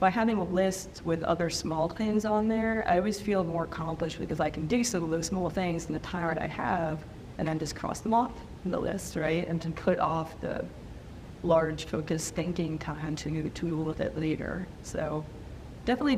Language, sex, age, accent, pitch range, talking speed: English, female, 30-49, American, 165-205 Hz, 210 wpm